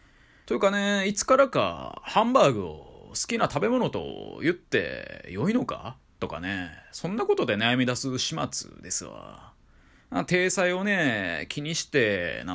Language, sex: Japanese, male